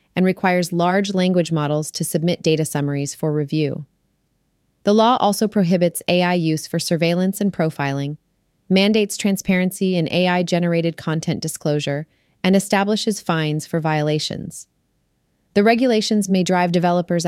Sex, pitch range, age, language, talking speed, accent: female, 160-190 Hz, 30-49, English, 130 wpm, American